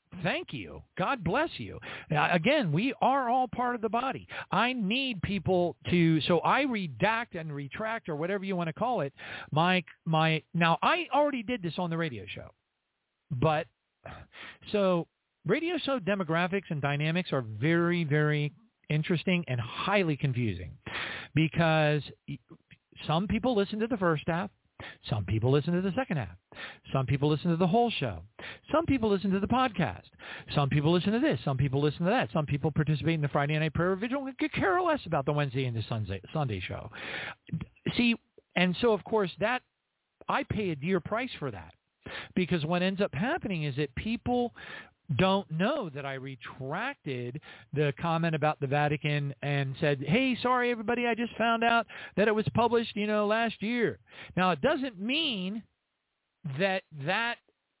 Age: 50-69